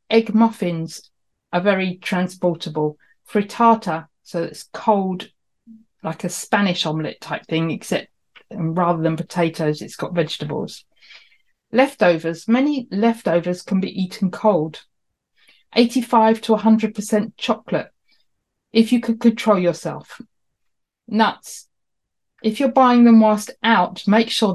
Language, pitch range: English, 175-225 Hz